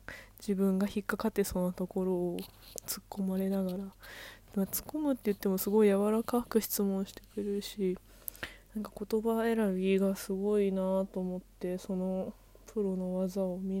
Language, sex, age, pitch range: Japanese, female, 20-39, 185-225 Hz